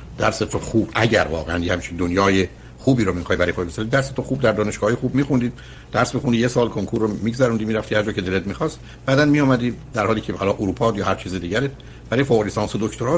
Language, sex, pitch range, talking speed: Persian, male, 95-130 Hz, 210 wpm